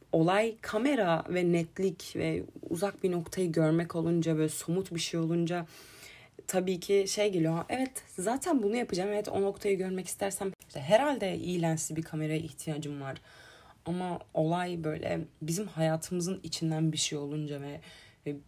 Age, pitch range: 20-39, 150-180 Hz